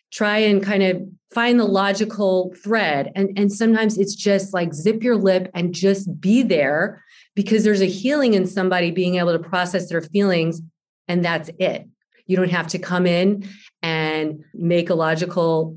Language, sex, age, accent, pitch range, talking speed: English, female, 30-49, American, 175-215 Hz, 175 wpm